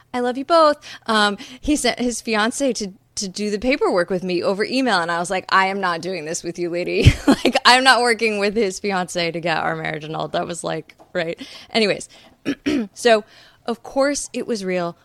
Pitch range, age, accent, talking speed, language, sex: 170-220 Hz, 20-39, American, 215 wpm, English, female